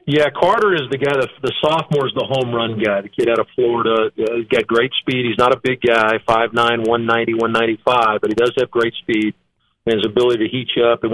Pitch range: 115-135 Hz